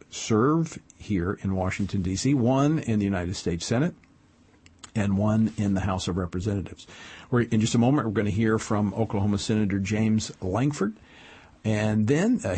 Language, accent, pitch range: English, American, 95-130 Hz